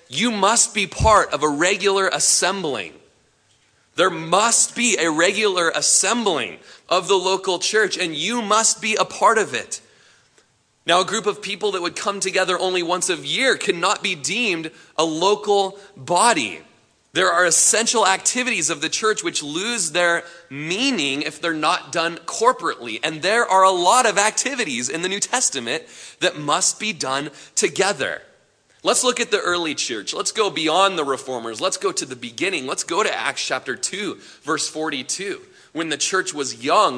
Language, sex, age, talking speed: English, male, 30-49, 170 wpm